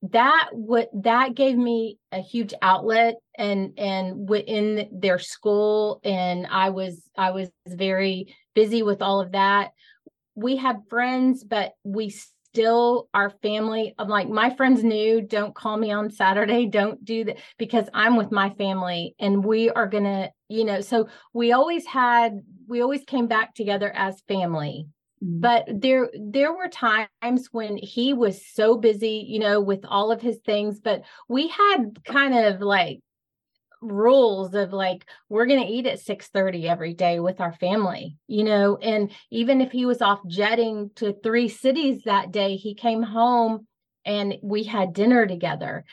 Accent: American